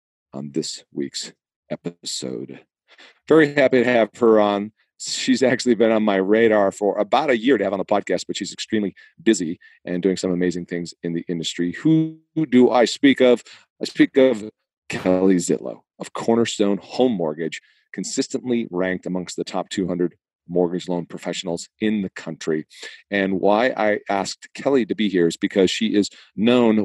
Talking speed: 170 wpm